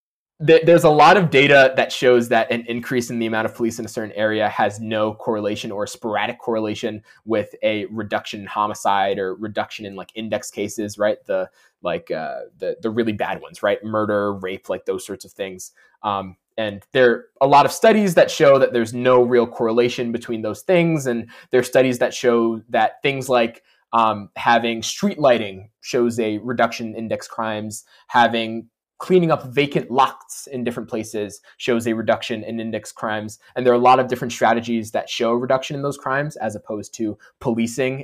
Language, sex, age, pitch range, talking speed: English, male, 20-39, 110-130 Hz, 190 wpm